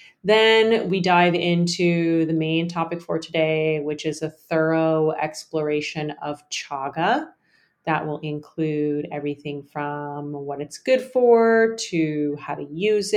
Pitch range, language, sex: 150-185 Hz, English, female